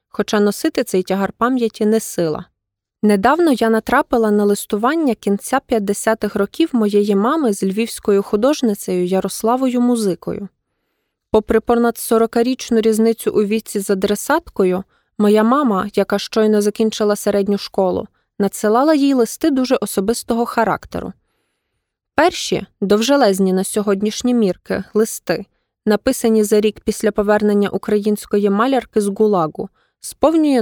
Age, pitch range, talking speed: 20-39, 205-245 Hz, 115 wpm